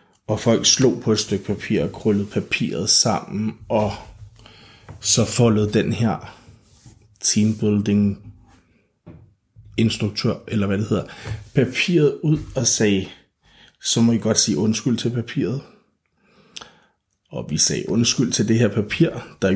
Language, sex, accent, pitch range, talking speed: Danish, male, native, 105-120 Hz, 130 wpm